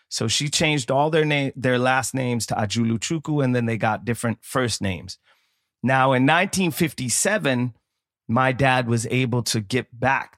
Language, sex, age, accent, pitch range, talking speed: English, male, 30-49, American, 115-140 Hz, 170 wpm